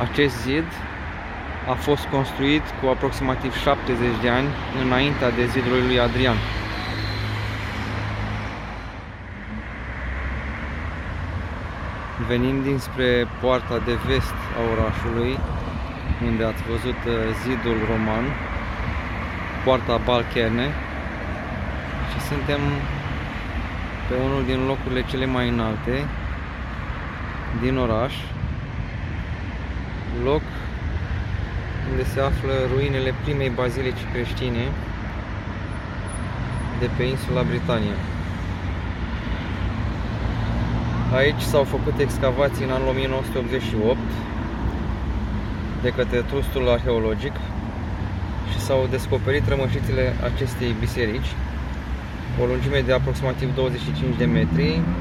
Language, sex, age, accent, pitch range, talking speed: Romanian, male, 20-39, native, 90-125 Hz, 85 wpm